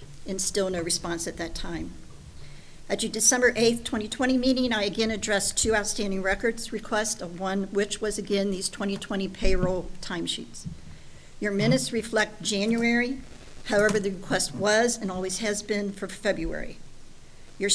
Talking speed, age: 150 wpm, 50-69